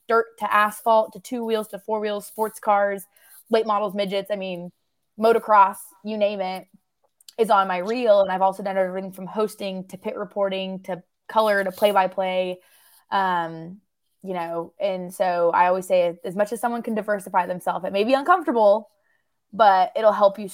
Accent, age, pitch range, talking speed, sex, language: American, 20-39, 185-220 Hz, 175 wpm, female, English